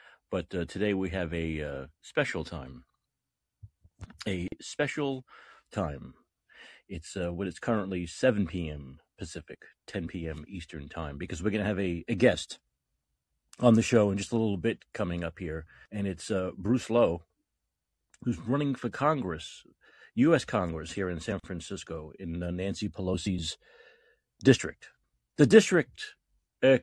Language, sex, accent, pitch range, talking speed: English, male, American, 85-105 Hz, 150 wpm